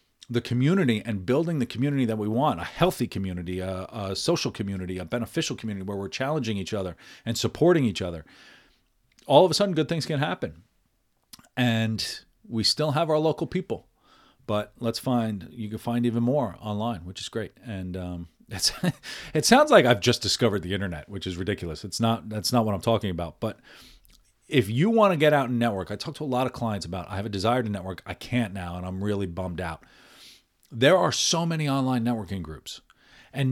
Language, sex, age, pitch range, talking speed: English, male, 40-59, 100-130 Hz, 205 wpm